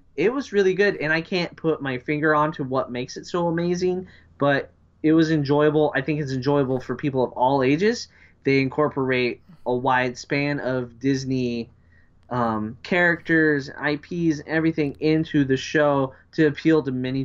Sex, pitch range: male, 120-150 Hz